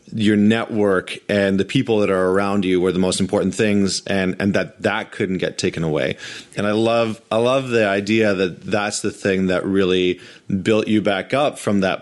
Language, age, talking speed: English, 30-49, 205 wpm